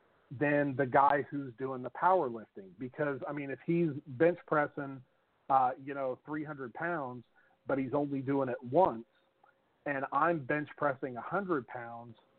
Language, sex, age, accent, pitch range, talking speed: English, male, 40-59, American, 135-160 Hz, 155 wpm